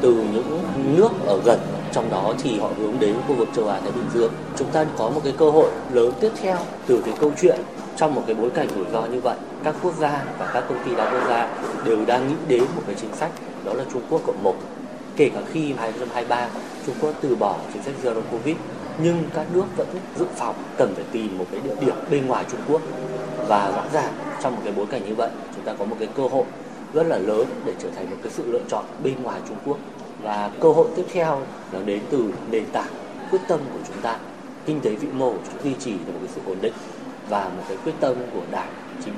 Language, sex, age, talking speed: Vietnamese, male, 20-39, 250 wpm